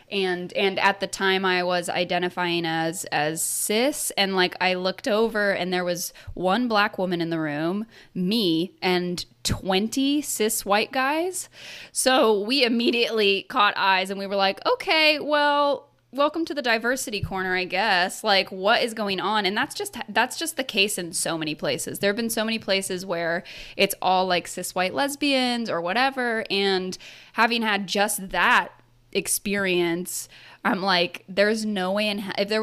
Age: 10-29